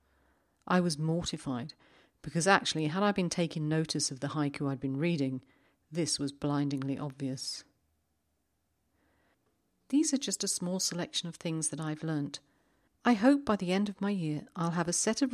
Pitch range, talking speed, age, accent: 145-200 Hz, 170 wpm, 40-59, British